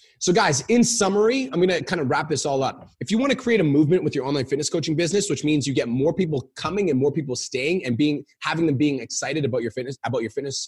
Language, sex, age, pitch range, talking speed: English, male, 20-39, 135-180 Hz, 275 wpm